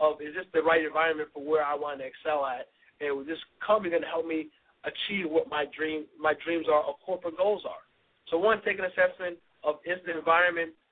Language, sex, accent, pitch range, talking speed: English, male, American, 150-185 Hz, 215 wpm